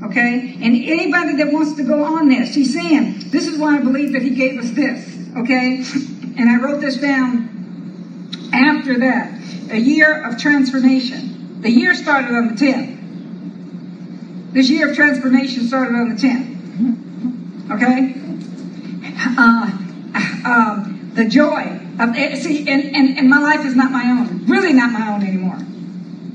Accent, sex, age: American, female, 50-69